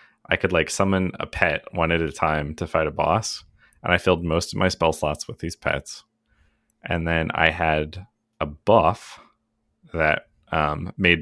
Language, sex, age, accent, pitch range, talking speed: English, male, 30-49, American, 80-110 Hz, 180 wpm